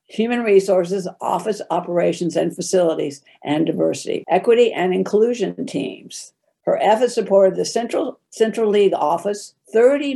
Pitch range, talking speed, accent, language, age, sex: 170-210 Hz, 125 wpm, American, English, 60-79, female